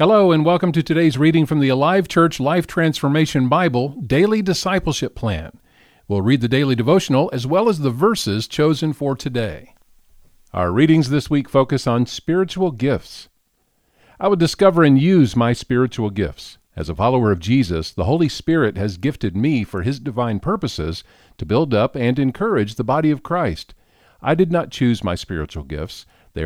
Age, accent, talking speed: 50-69, American, 175 wpm